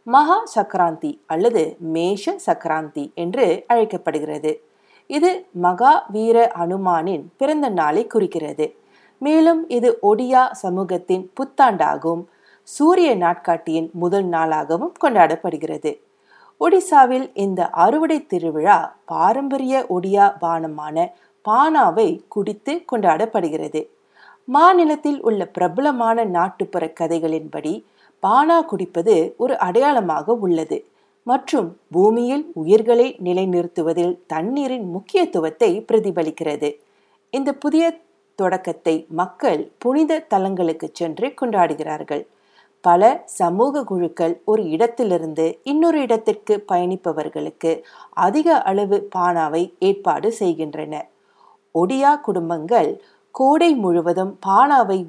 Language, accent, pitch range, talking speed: Tamil, native, 170-275 Hz, 75 wpm